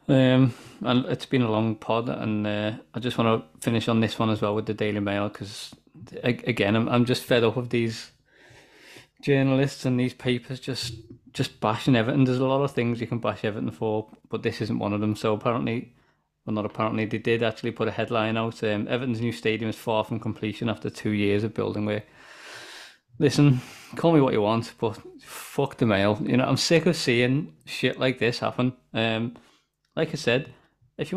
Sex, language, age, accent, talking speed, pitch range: male, English, 20-39, British, 210 wpm, 115-135 Hz